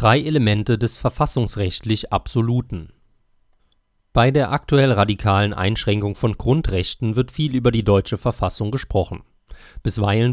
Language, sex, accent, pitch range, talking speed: German, male, German, 105-125 Hz, 115 wpm